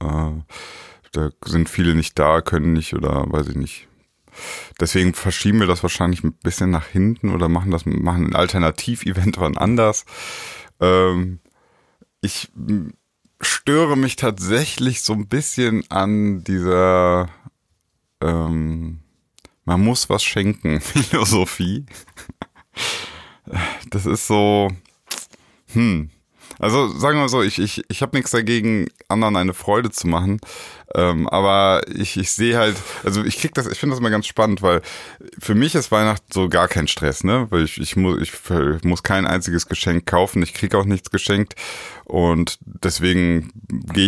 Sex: male